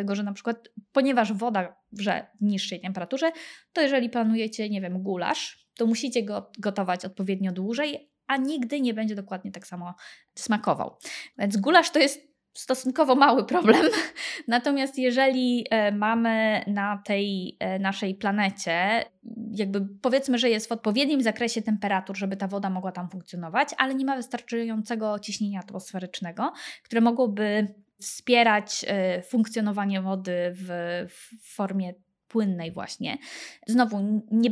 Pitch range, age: 195-245 Hz, 20-39